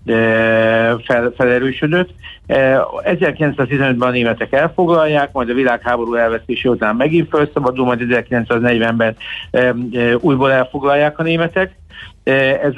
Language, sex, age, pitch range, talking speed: Hungarian, male, 60-79, 120-135 Hz, 95 wpm